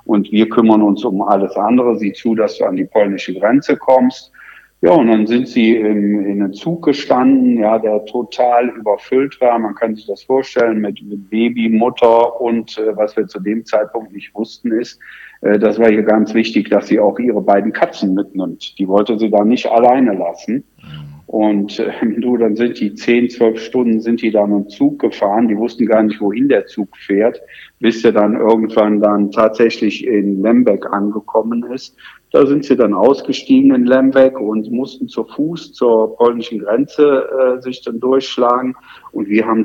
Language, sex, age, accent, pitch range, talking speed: German, male, 50-69, German, 105-125 Hz, 185 wpm